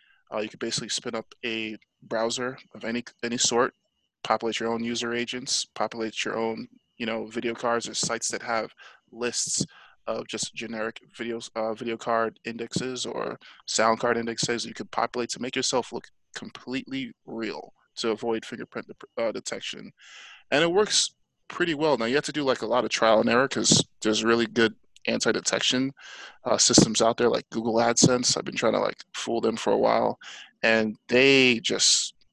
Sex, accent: male, American